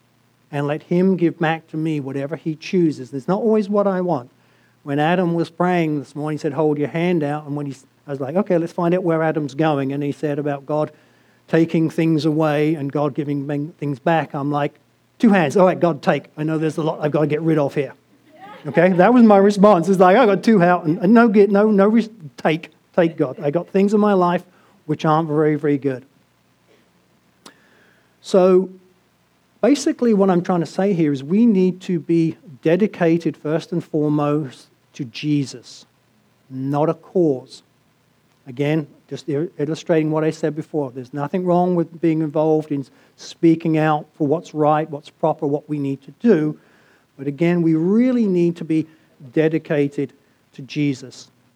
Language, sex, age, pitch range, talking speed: English, male, 50-69, 145-175 Hz, 185 wpm